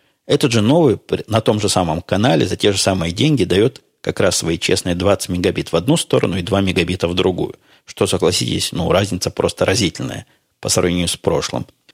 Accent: native